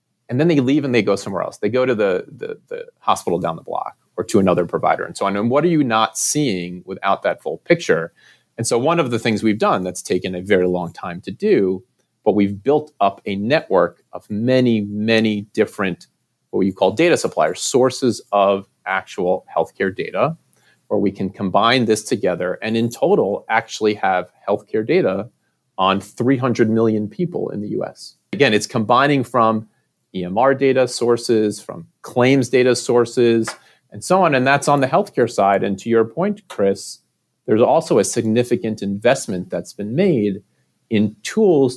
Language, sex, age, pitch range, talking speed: English, male, 30-49, 100-125 Hz, 180 wpm